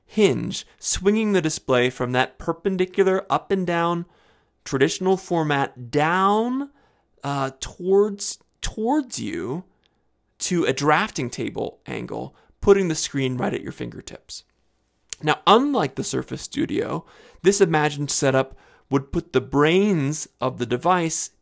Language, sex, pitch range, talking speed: English, male, 130-175 Hz, 125 wpm